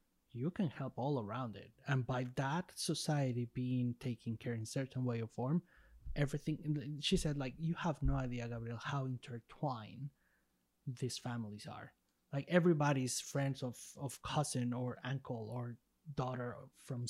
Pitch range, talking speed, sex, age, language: 120-145 Hz, 155 wpm, male, 20-39, English